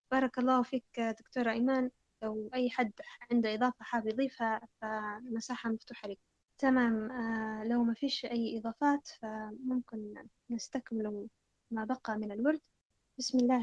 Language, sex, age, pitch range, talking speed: Arabic, female, 10-29, 235-275 Hz, 130 wpm